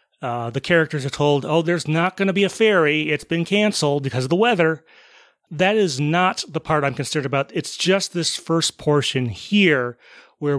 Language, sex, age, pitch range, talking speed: English, male, 30-49, 135-170 Hz, 200 wpm